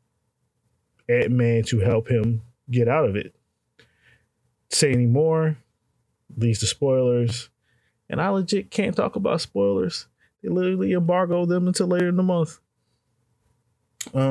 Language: English